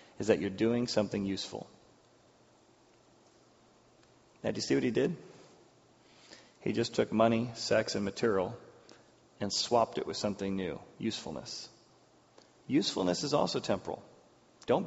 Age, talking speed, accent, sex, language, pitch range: 30-49, 130 wpm, American, male, English, 110-145 Hz